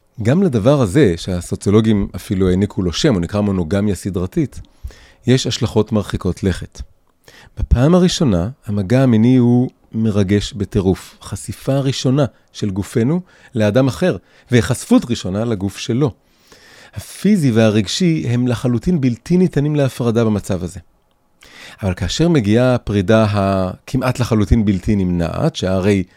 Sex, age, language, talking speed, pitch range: male, 30-49, Hebrew, 115 wpm, 95-140 Hz